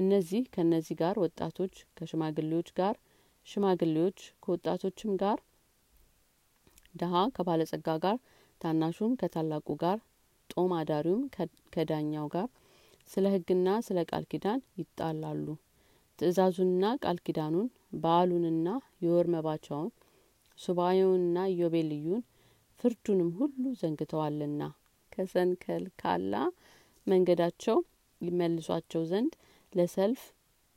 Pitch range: 160-190 Hz